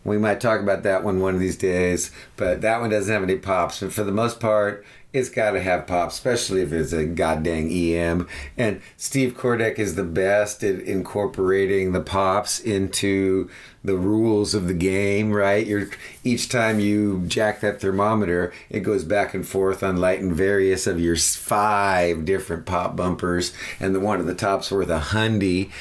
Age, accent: 50-69, American